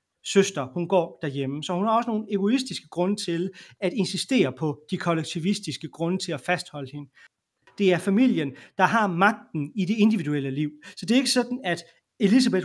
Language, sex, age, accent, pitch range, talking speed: Danish, male, 30-49, native, 170-220 Hz, 185 wpm